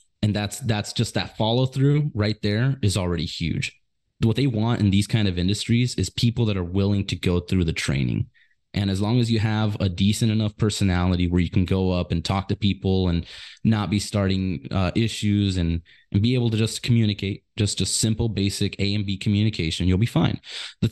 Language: English